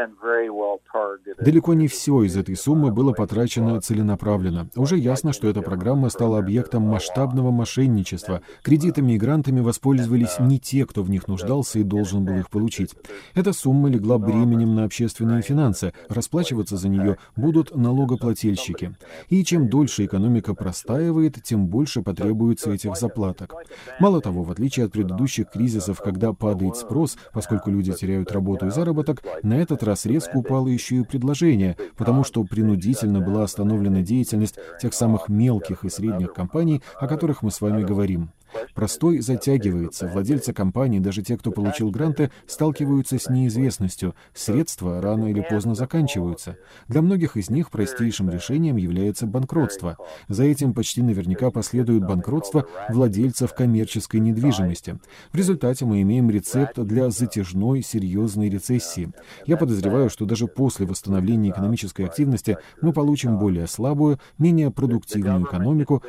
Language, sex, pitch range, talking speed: Russian, male, 100-130 Hz, 140 wpm